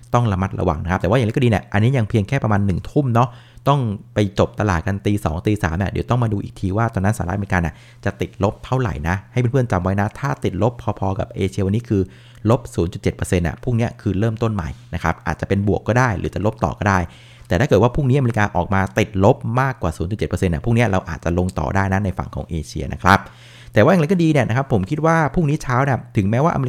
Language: Thai